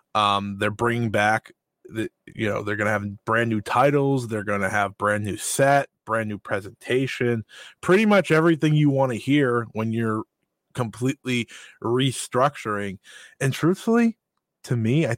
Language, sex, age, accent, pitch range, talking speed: English, male, 20-39, American, 110-140 Hz, 150 wpm